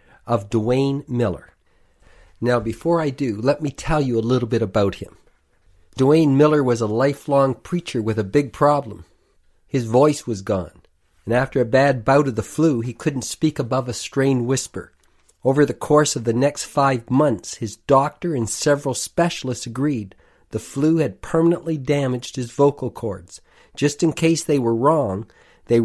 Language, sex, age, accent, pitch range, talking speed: English, male, 50-69, American, 120-150 Hz, 170 wpm